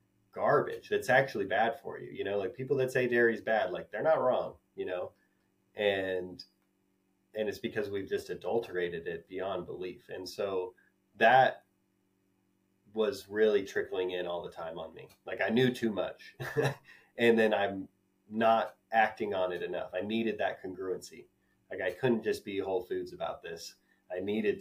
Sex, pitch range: male, 95-125 Hz